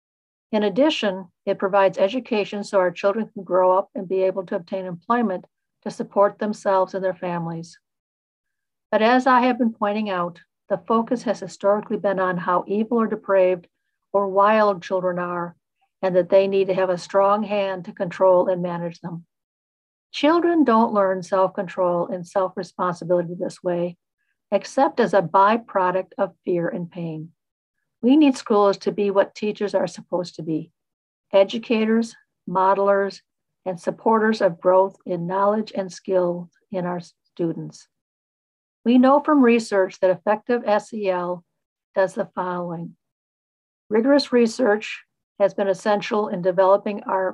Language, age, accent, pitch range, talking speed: English, 50-69, American, 185-215 Hz, 150 wpm